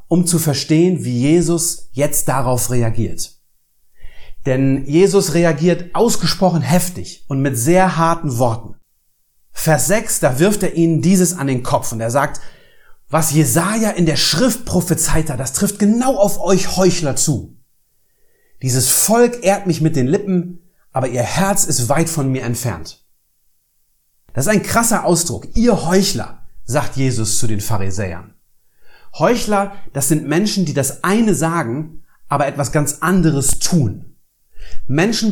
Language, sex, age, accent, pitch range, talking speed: German, male, 40-59, German, 135-185 Hz, 145 wpm